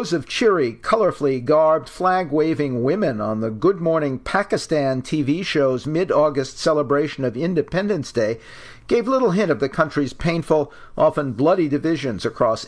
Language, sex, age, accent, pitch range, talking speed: English, male, 50-69, American, 130-160 Hz, 135 wpm